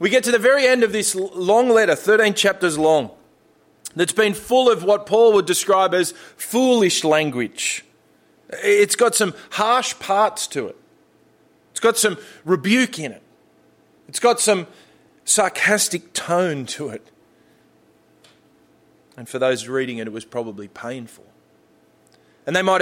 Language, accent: English, Australian